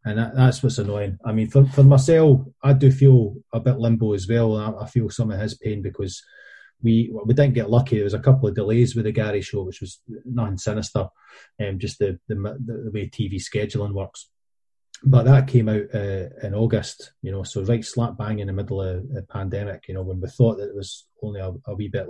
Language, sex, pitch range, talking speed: English, male, 95-120 Hz, 230 wpm